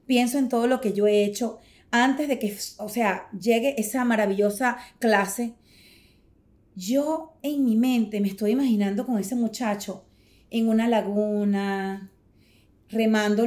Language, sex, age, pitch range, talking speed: Spanish, female, 30-49, 210-295 Hz, 140 wpm